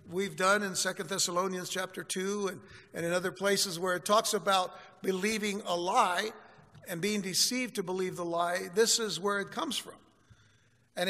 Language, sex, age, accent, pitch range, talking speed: English, male, 60-79, American, 170-210 Hz, 180 wpm